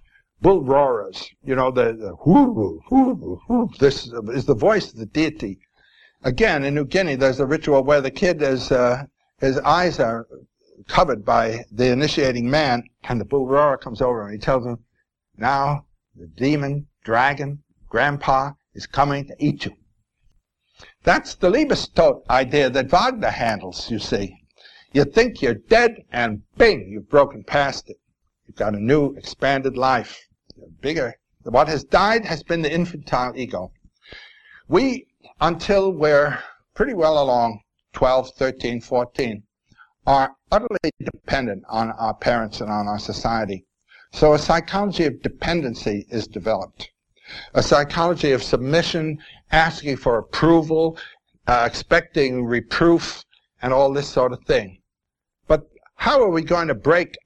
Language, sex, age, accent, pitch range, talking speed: English, male, 60-79, American, 120-160 Hz, 145 wpm